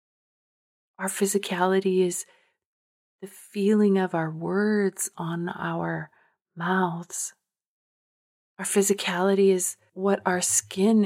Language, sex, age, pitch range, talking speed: English, female, 30-49, 185-210 Hz, 90 wpm